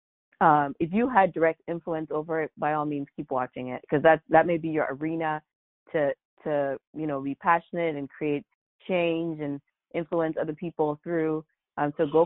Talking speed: 180 wpm